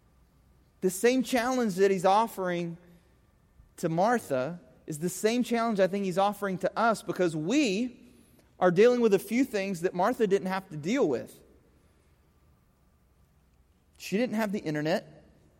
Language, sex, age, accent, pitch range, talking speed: English, male, 30-49, American, 180-230 Hz, 145 wpm